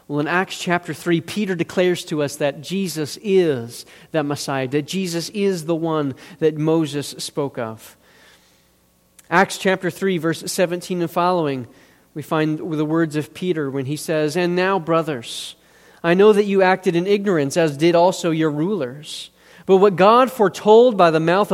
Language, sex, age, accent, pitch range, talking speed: English, male, 40-59, American, 155-200 Hz, 170 wpm